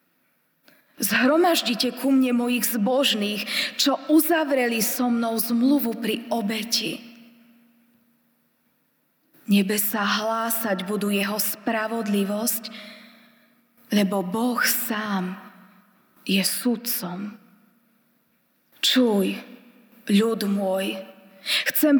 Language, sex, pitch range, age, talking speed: Slovak, female, 210-245 Hz, 20-39, 75 wpm